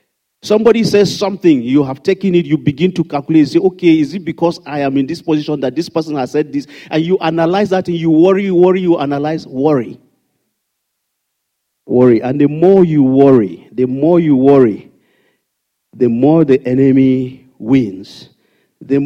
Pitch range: 125-170 Hz